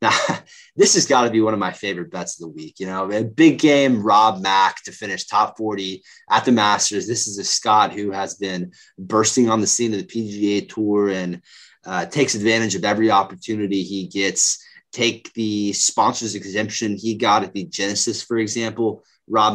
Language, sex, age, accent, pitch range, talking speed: English, male, 20-39, American, 95-115 Hz, 195 wpm